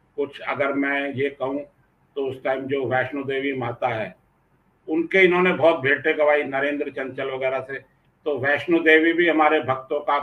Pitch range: 130-150 Hz